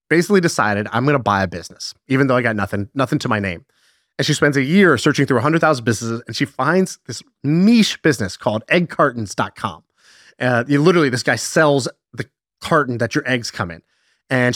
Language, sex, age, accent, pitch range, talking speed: English, male, 30-49, American, 115-155 Hz, 195 wpm